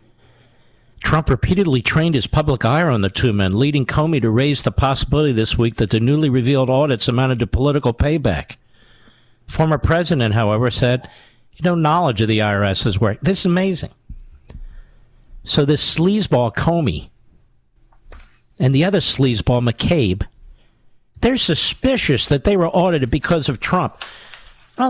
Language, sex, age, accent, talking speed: English, male, 50-69, American, 145 wpm